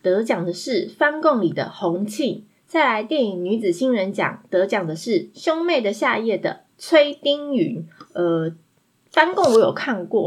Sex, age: female, 20-39